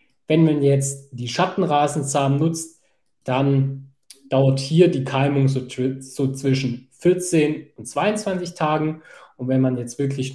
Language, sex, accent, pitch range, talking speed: German, male, German, 130-145 Hz, 140 wpm